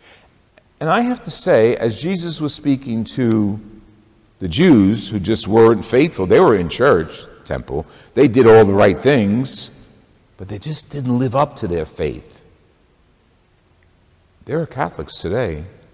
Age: 60-79